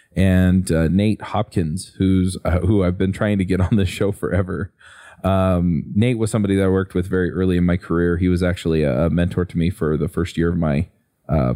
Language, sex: English, male